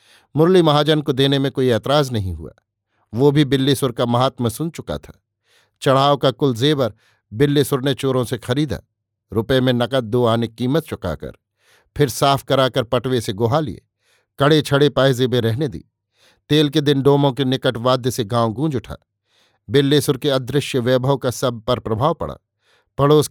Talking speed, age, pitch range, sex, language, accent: 170 wpm, 50-69, 115-145 Hz, male, Hindi, native